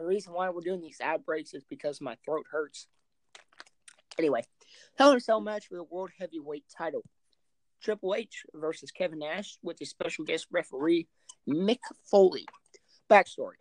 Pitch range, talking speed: 160-200 Hz, 160 wpm